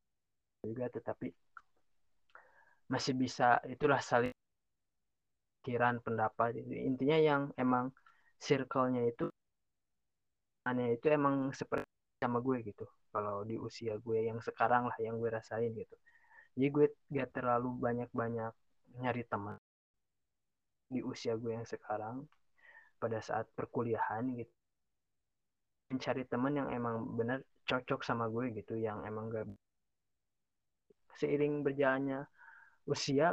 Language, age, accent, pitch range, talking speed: Indonesian, 20-39, native, 110-135 Hz, 115 wpm